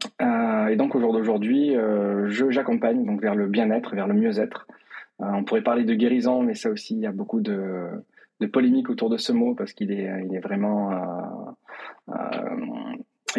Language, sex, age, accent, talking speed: French, male, 20-39, French, 195 wpm